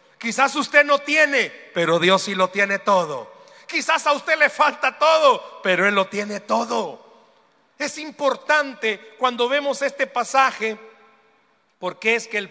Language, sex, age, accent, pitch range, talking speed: Spanish, male, 40-59, Mexican, 180-270 Hz, 150 wpm